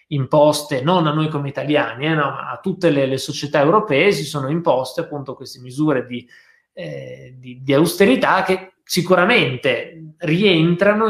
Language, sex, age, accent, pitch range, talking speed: Italian, male, 20-39, native, 135-170 Hz, 145 wpm